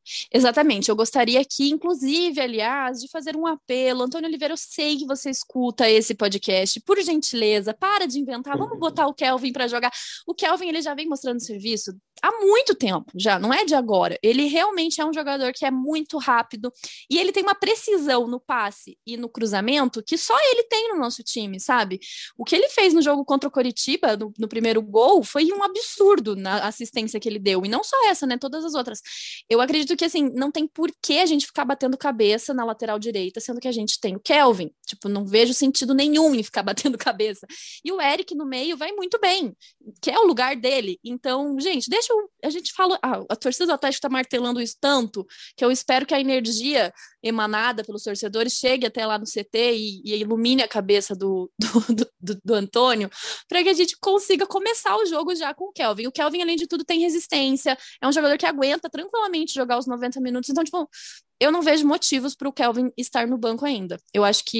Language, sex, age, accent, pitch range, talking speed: Portuguese, female, 20-39, Brazilian, 225-315 Hz, 215 wpm